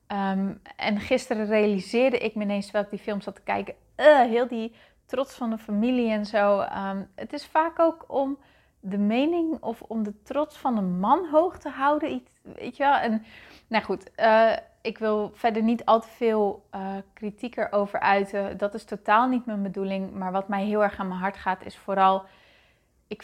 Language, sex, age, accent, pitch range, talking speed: Dutch, female, 20-39, Dutch, 200-240 Hz, 190 wpm